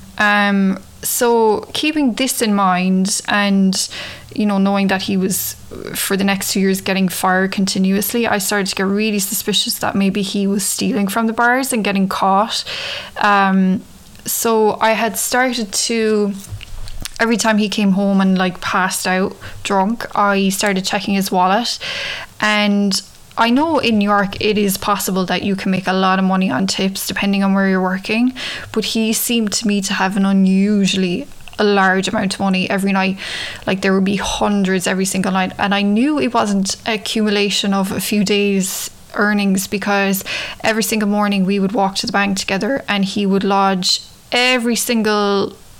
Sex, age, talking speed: female, 20-39, 175 wpm